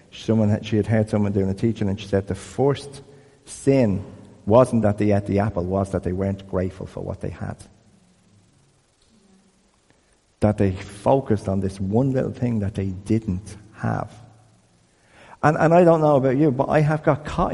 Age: 50-69